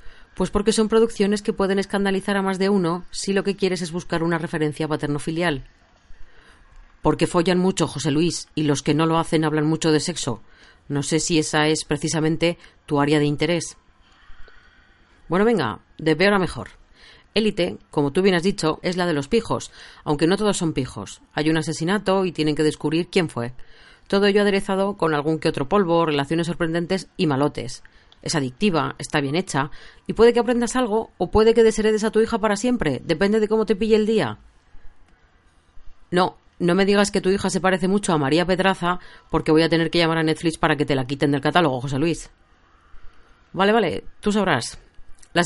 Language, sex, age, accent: Spanish, female, 40-59, Spanish